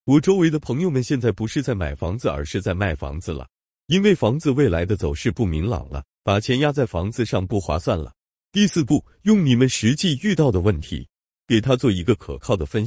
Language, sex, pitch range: Chinese, male, 90-150 Hz